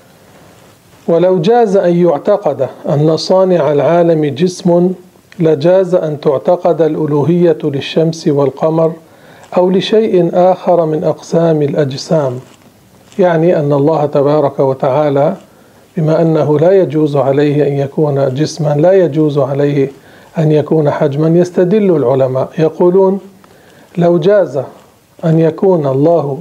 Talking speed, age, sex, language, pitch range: 105 wpm, 50-69, male, Arabic, 150-180 Hz